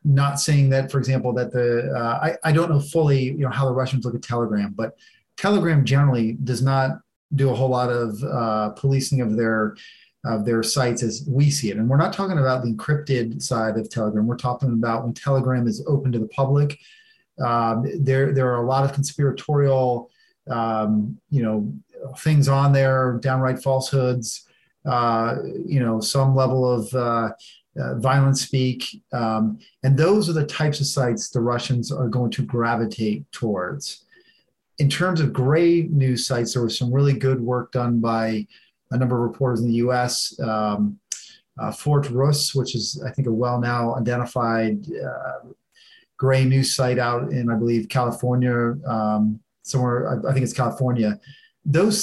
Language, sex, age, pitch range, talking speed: English, male, 30-49, 120-140 Hz, 175 wpm